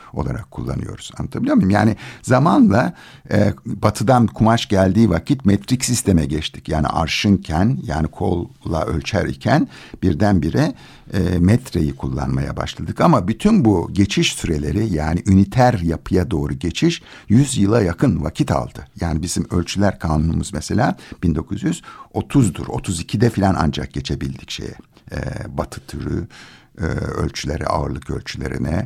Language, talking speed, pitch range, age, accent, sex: Turkish, 120 wpm, 80-110 Hz, 60-79, native, male